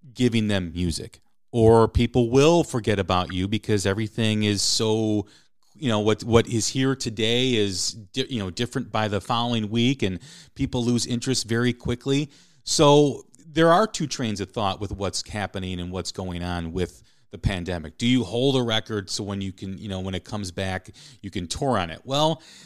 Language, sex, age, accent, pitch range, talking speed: English, male, 40-59, American, 100-135 Hz, 195 wpm